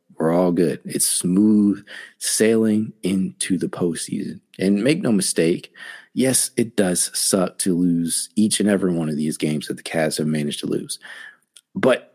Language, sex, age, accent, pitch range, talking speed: English, male, 30-49, American, 80-95 Hz, 170 wpm